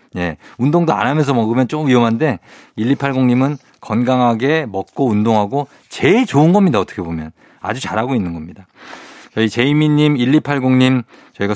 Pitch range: 105-145 Hz